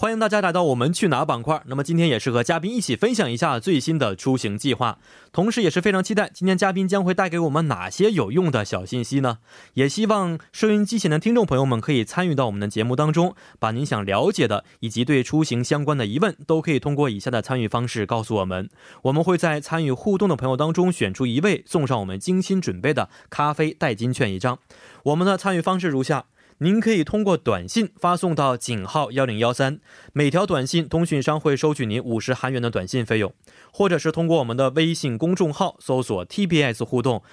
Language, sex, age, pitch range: Korean, male, 20-39, 120-175 Hz